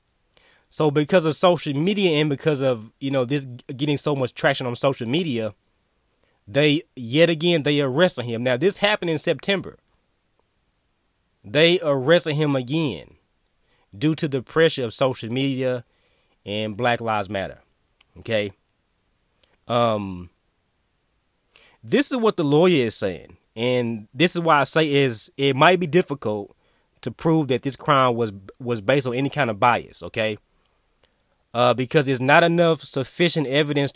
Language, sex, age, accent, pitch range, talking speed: English, male, 20-39, American, 115-145 Hz, 150 wpm